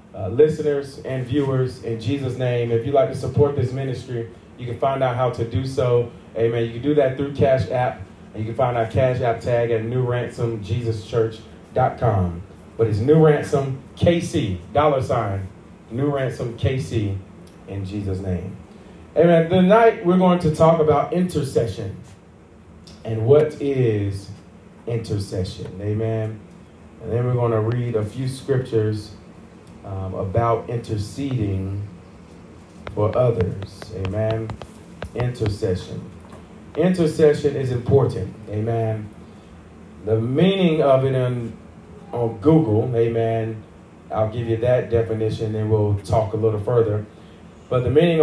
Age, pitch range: 30-49, 110-135 Hz